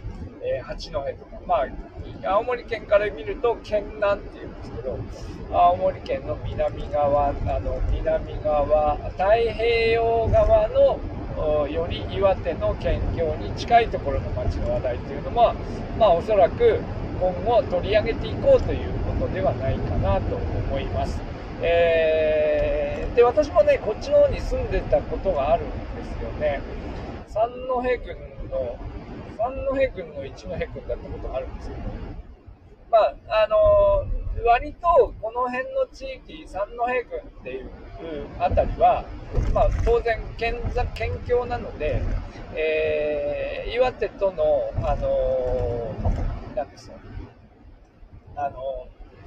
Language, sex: Japanese, male